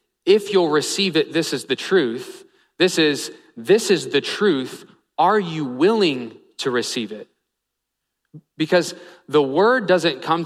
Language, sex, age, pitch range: English, male, 30-49, 135-180 Hz